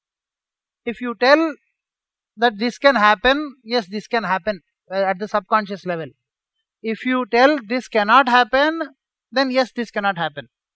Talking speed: 150 wpm